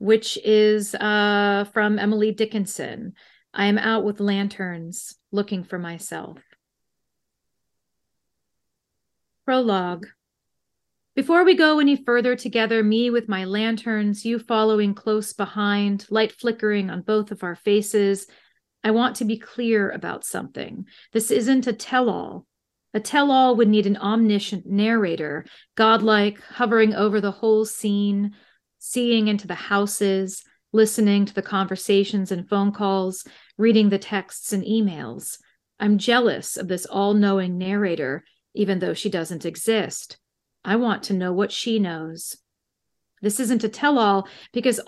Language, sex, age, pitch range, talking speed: English, female, 40-59, 200-230 Hz, 130 wpm